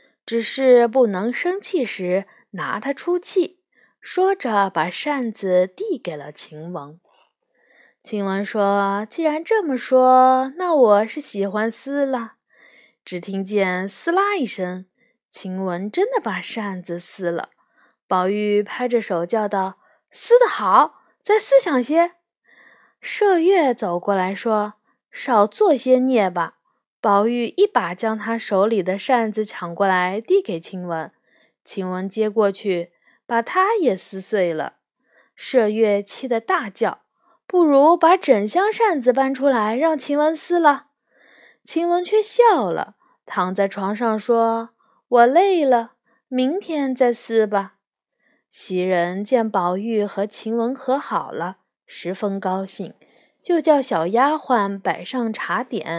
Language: Chinese